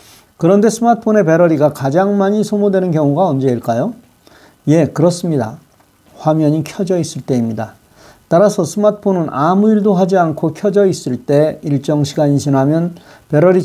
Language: Korean